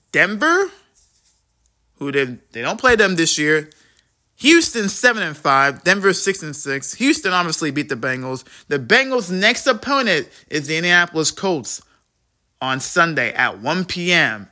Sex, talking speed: male, 150 wpm